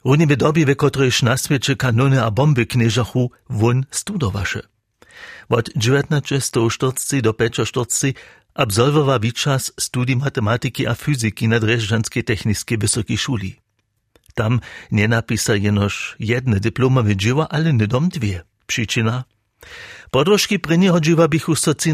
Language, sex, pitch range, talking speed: German, male, 110-135 Hz, 135 wpm